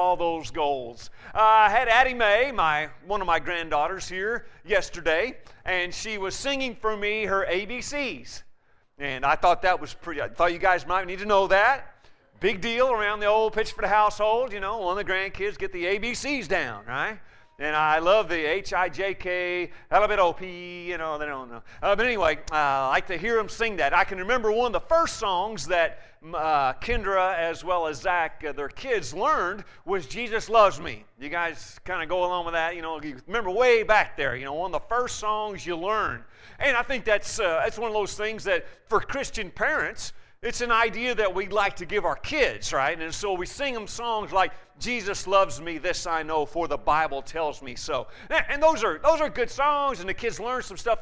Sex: male